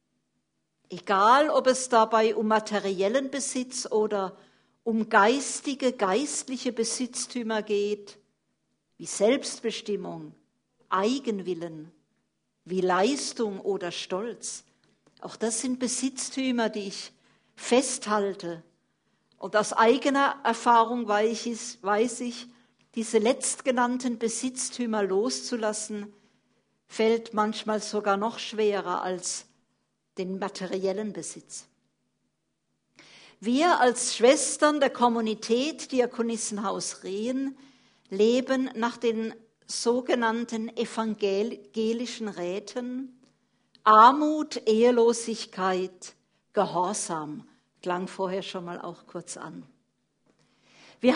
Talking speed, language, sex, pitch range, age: 80 wpm, German, female, 200-250 Hz, 50-69